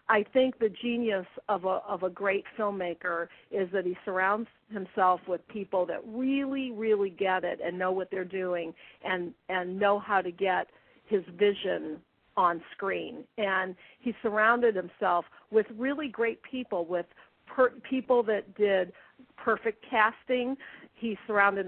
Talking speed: 150 wpm